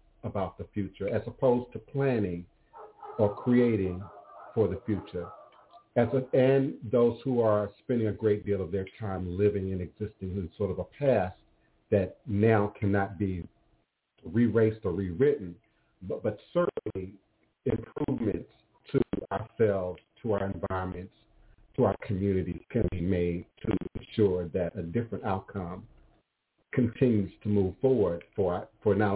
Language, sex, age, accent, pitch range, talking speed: English, male, 50-69, American, 95-120 Hz, 140 wpm